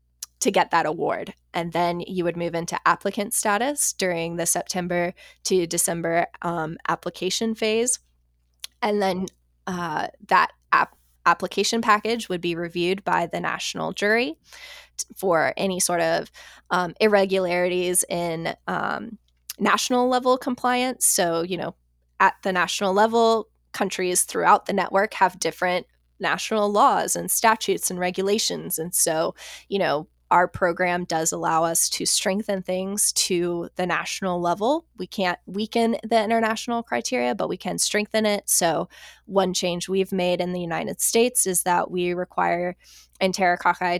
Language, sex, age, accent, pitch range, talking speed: English, female, 20-39, American, 175-215 Hz, 145 wpm